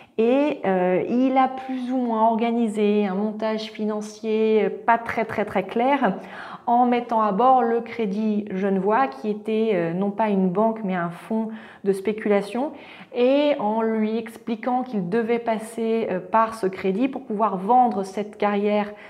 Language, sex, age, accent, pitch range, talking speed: French, female, 30-49, French, 185-225 Hz, 155 wpm